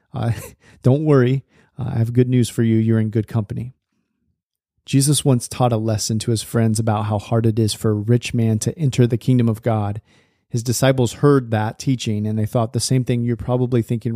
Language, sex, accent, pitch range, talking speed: English, male, American, 110-130 Hz, 215 wpm